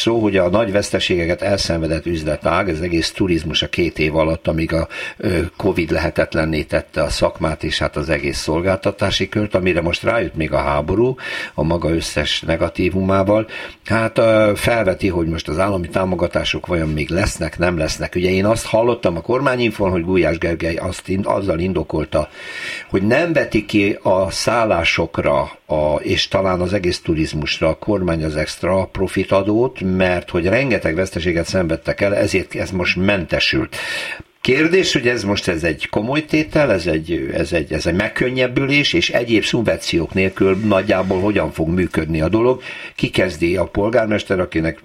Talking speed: 160 wpm